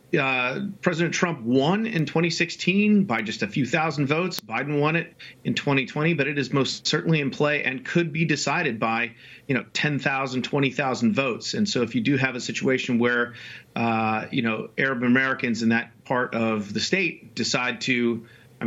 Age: 40-59